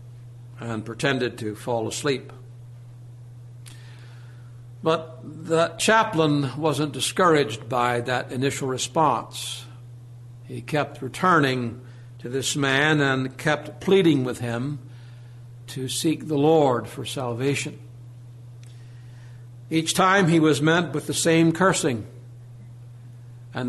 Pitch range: 120-155 Hz